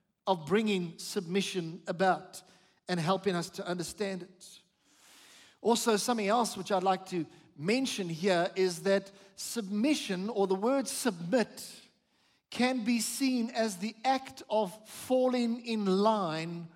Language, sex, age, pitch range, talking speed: English, male, 50-69, 190-240 Hz, 130 wpm